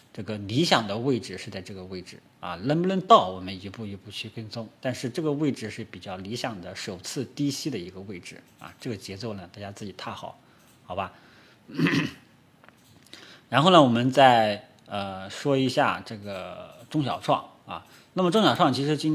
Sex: male